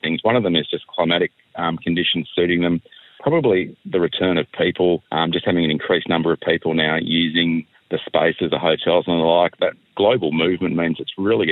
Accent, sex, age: Australian, male, 40-59